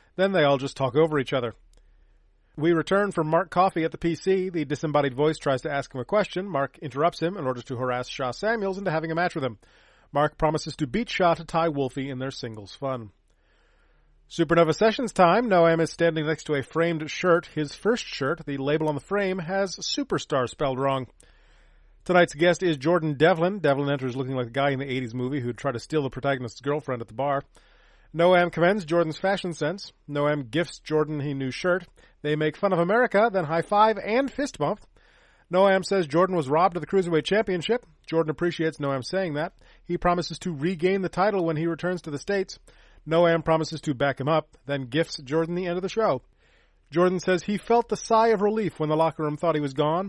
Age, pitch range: 30-49, 140-185 Hz